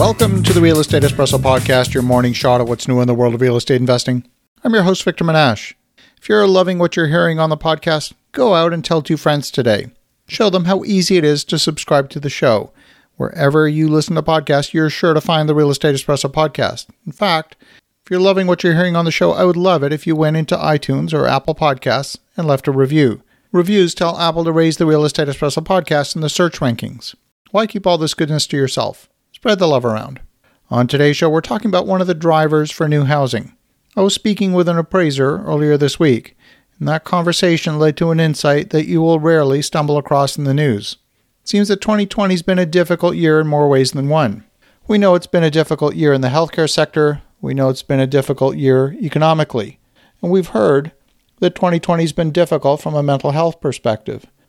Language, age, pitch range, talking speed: English, 50-69, 140-170 Hz, 220 wpm